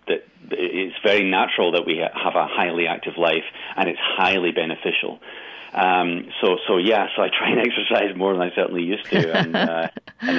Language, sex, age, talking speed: English, male, 40-59, 190 wpm